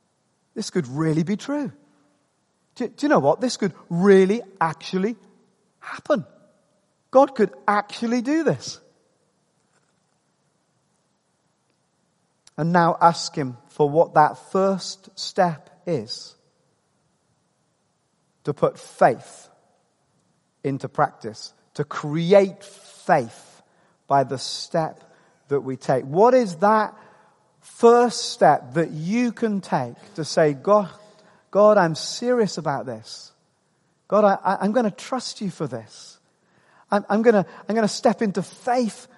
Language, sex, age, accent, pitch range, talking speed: English, male, 40-59, British, 155-205 Hz, 120 wpm